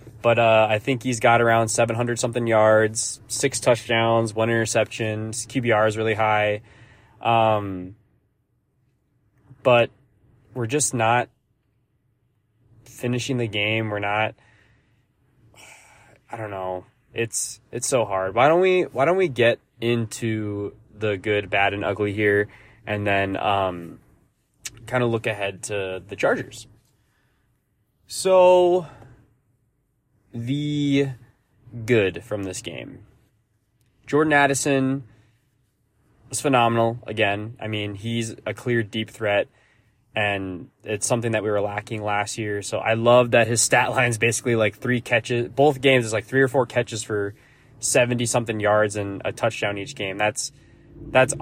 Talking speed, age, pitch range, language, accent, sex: 135 wpm, 20-39, 105-125 Hz, English, American, male